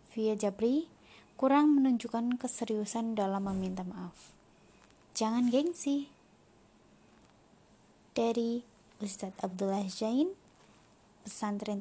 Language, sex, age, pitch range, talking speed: Indonesian, female, 20-39, 210-255 Hz, 75 wpm